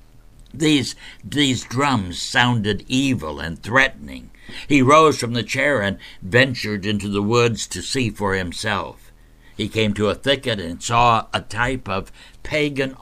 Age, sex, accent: 60-79, male, American